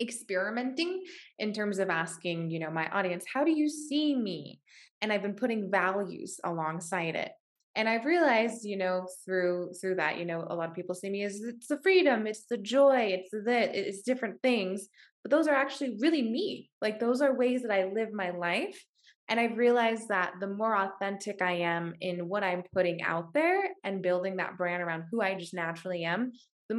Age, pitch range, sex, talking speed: 20-39, 185-245 Hz, female, 200 wpm